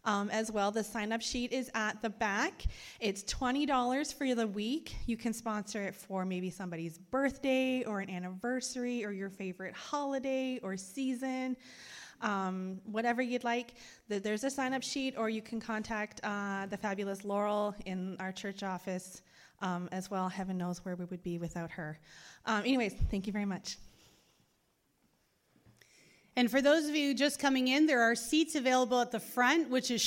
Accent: American